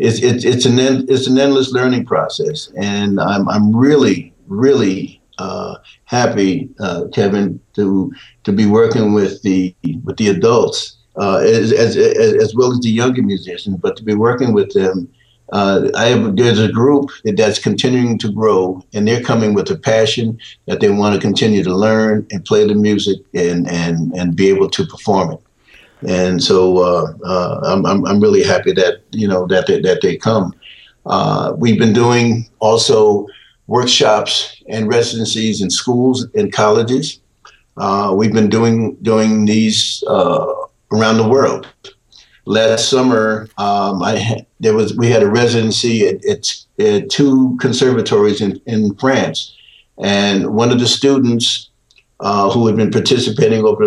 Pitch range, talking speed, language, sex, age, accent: 100-125 Hz, 160 wpm, English, male, 50-69, American